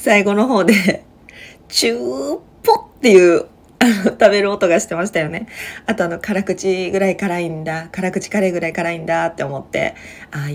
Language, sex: Japanese, female